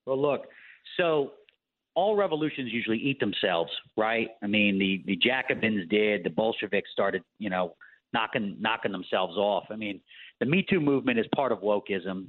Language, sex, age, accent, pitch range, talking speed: English, male, 40-59, American, 115-160 Hz, 165 wpm